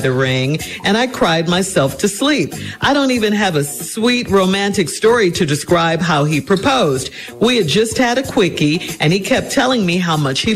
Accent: American